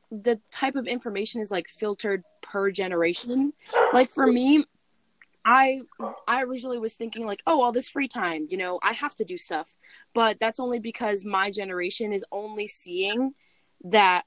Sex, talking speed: female, 170 wpm